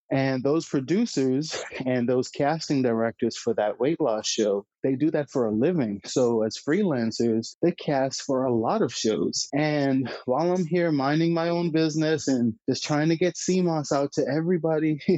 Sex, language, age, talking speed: male, English, 30-49, 180 wpm